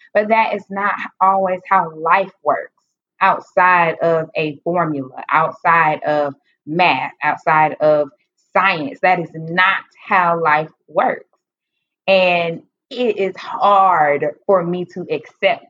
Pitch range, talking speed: 165-230 Hz, 120 wpm